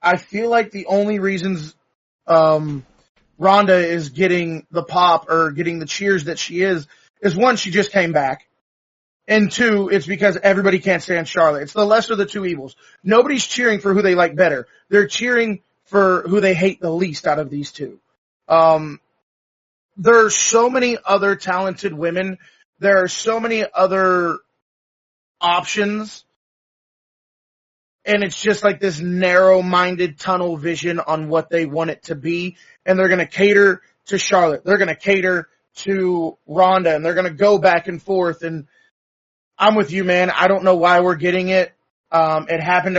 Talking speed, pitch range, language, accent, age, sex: 175 wpm, 170-195 Hz, English, American, 30-49, male